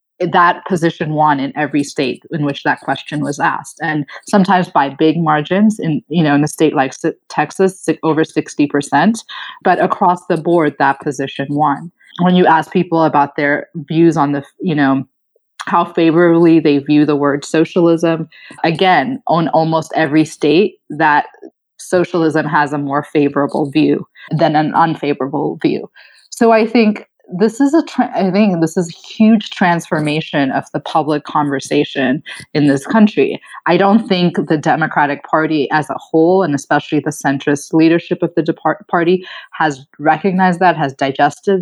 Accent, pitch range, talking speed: American, 145-180 Hz, 160 wpm